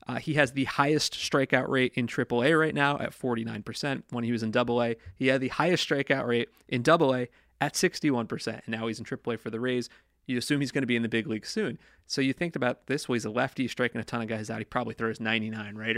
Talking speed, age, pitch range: 275 wpm, 30-49, 115-140 Hz